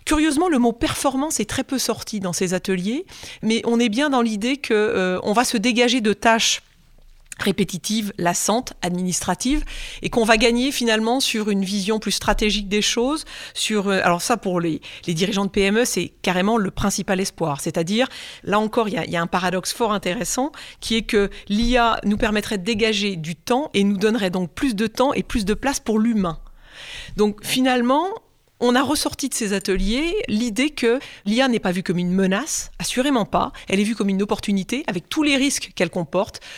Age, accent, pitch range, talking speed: 40-59, French, 195-245 Hz, 200 wpm